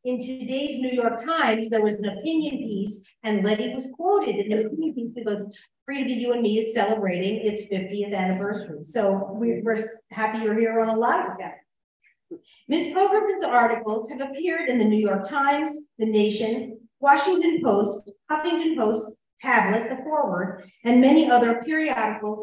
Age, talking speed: 50-69, 170 wpm